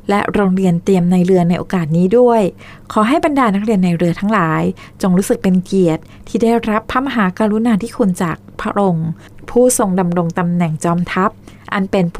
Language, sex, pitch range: Thai, female, 180-220 Hz